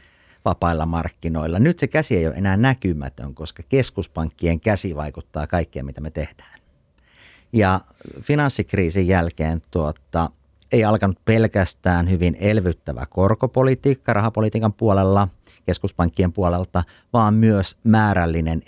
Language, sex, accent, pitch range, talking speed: Finnish, male, native, 80-105 Hz, 110 wpm